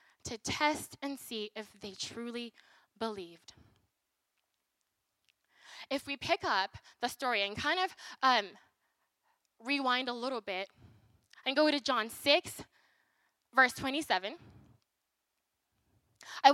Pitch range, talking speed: 225-300 Hz, 110 wpm